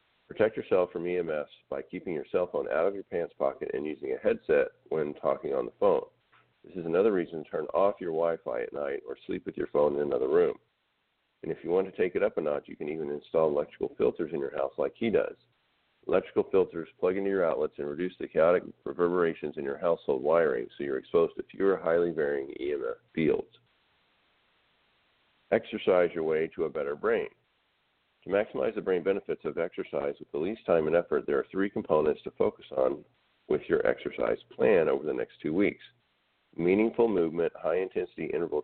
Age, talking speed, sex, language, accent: 50-69, 200 wpm, male, English, American